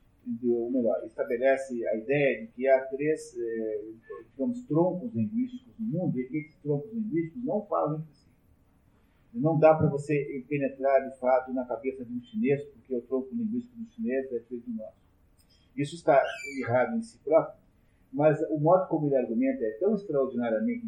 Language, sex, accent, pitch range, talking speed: Portuguese, male, Brazilian, 125-160 Hz, 170 wpm